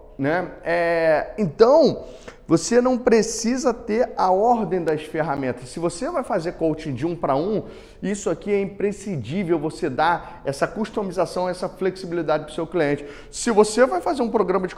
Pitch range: 155-215 Hz